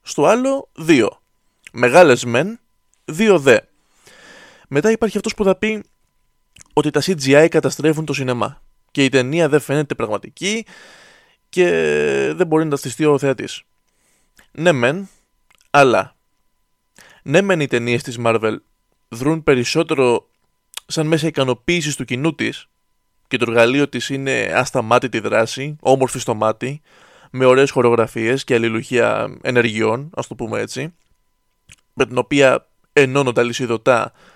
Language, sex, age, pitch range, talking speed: Greek, male, 20-39, 125-175 Hz, 130 wpm